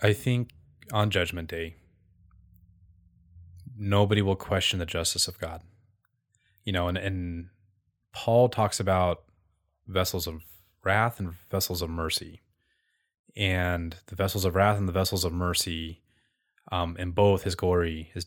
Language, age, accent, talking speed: English, 20-39, American, 140 wpm